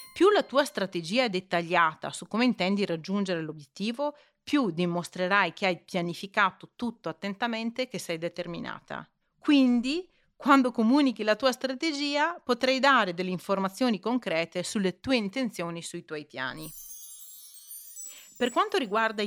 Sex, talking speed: female, 135 wpm